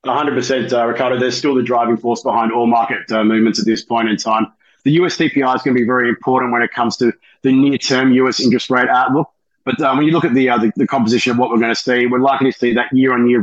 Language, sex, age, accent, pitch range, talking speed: English, male, 30-49, Australian, 115-130 Hz, 275 wpm